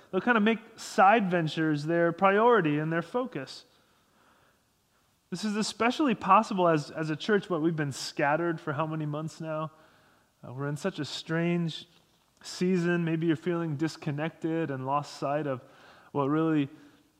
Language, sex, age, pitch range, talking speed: English, male, 30-49, 155-190 Hz, 155 wpm